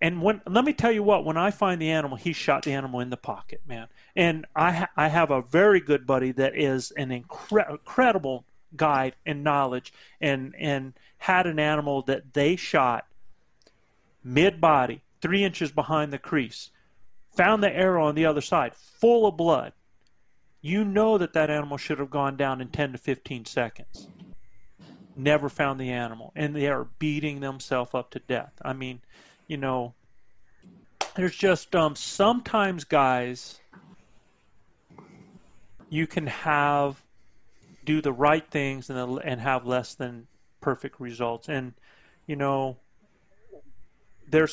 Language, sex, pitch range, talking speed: English, male, 130-175 Hz, 155 wpm